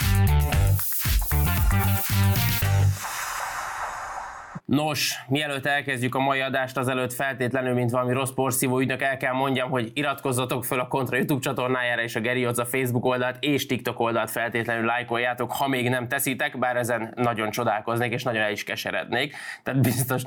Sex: male